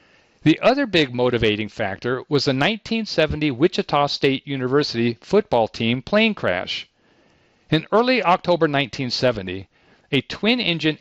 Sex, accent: male, American